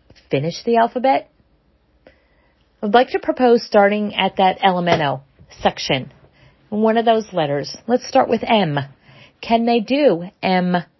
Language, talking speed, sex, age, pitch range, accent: English, 130 wpm, female, 40-59, 190-255 Hz, American